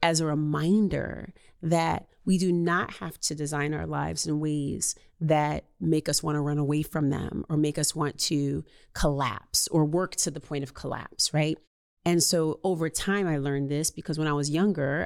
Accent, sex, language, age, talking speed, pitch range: American, female, English, 30-49, 190 wpm, 145-175 Hz